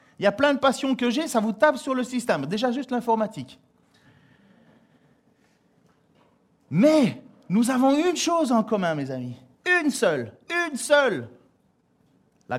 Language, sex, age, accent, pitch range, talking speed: French, male, 40-59, French, 115-170 Hz, 150 wpm